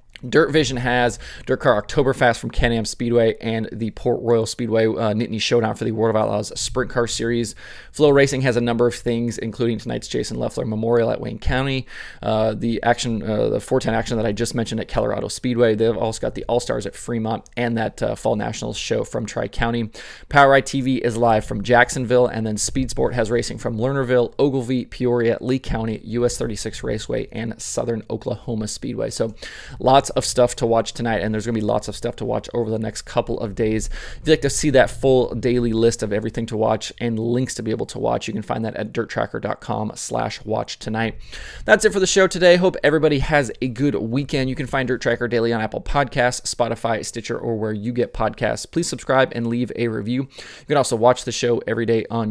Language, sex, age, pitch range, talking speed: English, male, 20-39, 115-125 Hz, 220 wpm